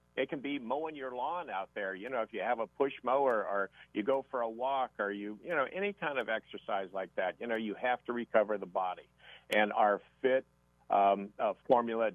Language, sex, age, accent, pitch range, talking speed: English, male, 50-69, American, 110-130 Hz, 225 wpm